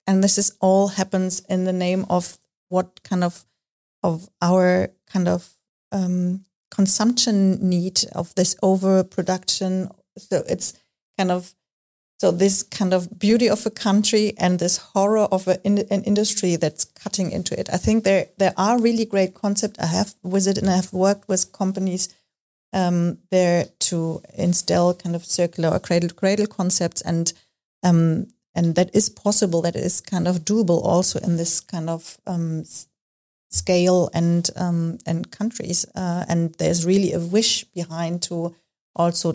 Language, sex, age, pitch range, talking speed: English, female, 30-49, 170-195 Hz, 160 wpm